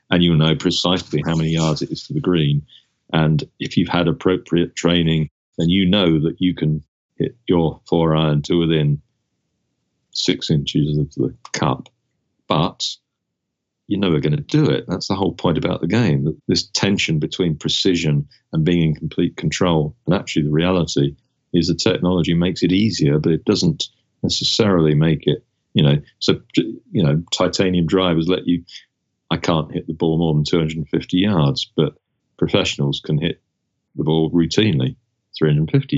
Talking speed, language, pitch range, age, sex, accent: 165 wpm, English, 75-95 Hz, 40-59, male, British